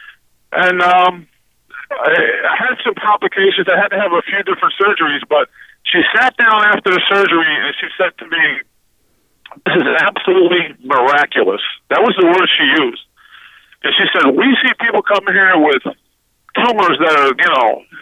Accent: American